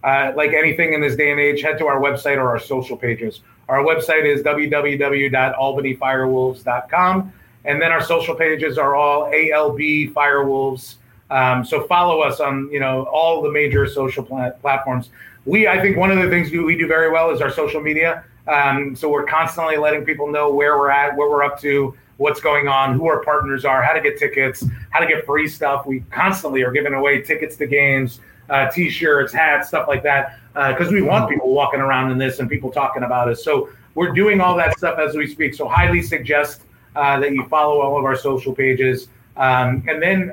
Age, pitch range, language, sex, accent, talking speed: 30-49, 130-155 Hz, English, male, American, 210 wpm